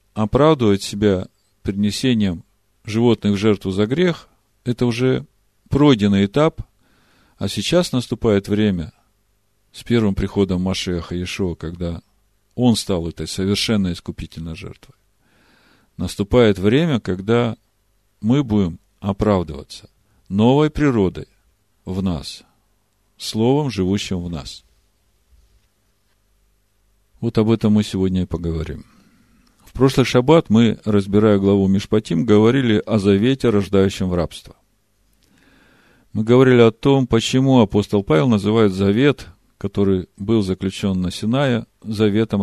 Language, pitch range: Russian, 100-115 Hz